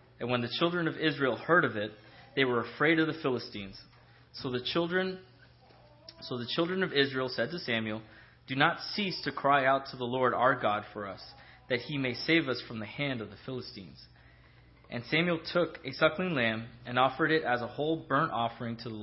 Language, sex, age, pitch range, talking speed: English, male, 20-39, 115-140 Hz, 210 wpm